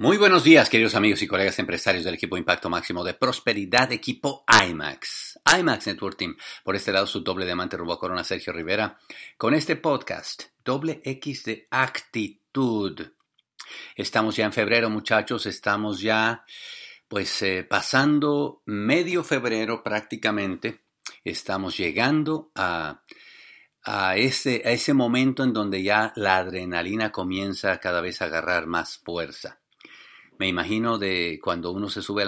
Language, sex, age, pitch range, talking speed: English, male, 50-69, 100-120 Hz, 145 wpm